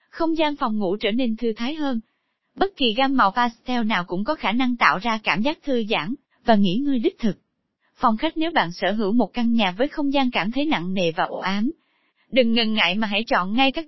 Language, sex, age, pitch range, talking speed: Vietnamese, female, 20-39, 220-290 Hz, 245 wpm